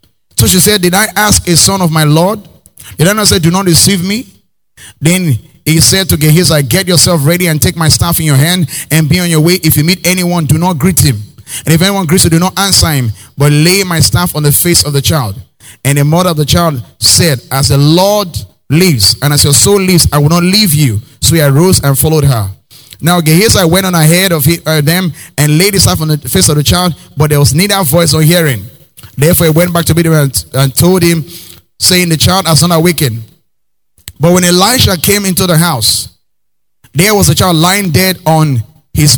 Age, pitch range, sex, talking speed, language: 30-49, 140-175 Hz, male, 225 wpm, English